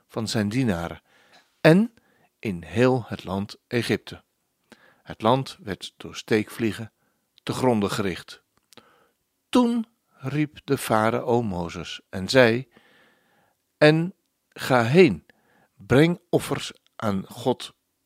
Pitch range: 105-155 Hz